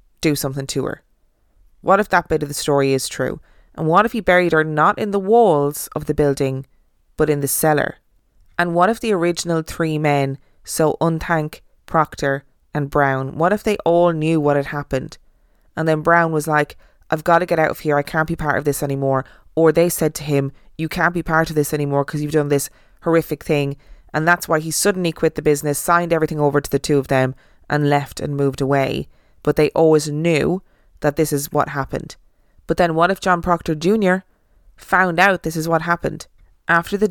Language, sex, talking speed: English, female, 215 wpm